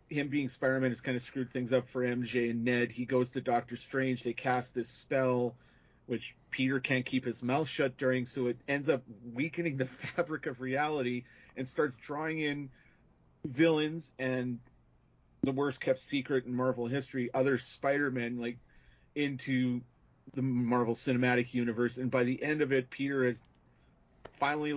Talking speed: 165 wpm